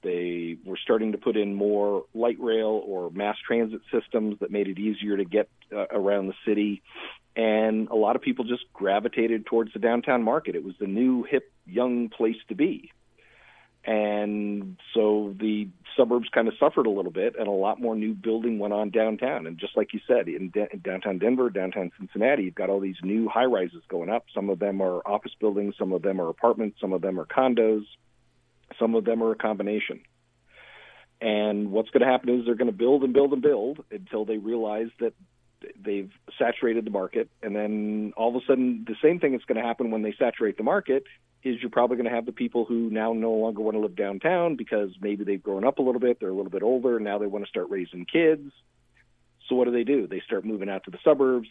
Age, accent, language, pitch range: 40-59, American, English, 105-120 Hz